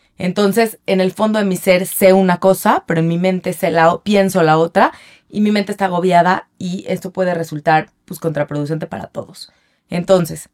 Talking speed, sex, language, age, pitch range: 190 wpm, female, Spanish, 20-39, 160-190 Hz